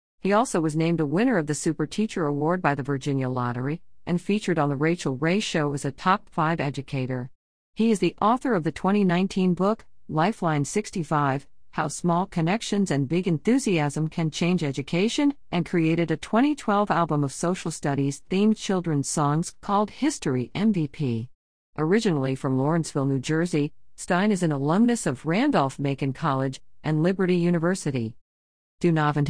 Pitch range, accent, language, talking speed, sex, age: 140-185 Hz, American, English, 150 wpm, female, 50-69